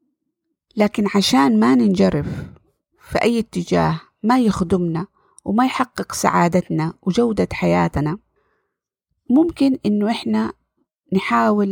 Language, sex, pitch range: Arabic, female, 190-250 Hz